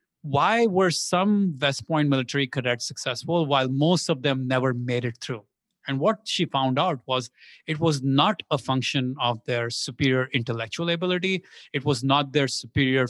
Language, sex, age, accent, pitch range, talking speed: English, male, 30-49, Indian, 130-175 Hz, 170 wpm